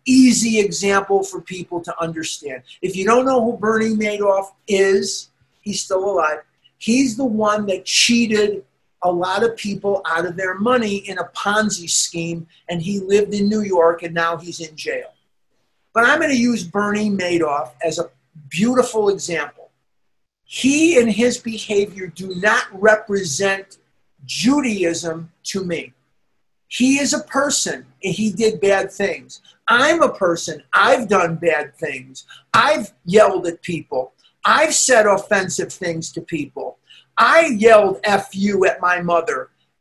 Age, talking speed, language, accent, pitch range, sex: 50-69, 150 wpm, English, American, 180-230 Hz, male